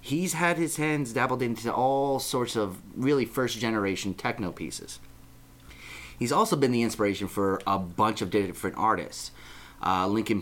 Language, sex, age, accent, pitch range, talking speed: English, male, 30-49, American, 100-130 Hz, 155 wpm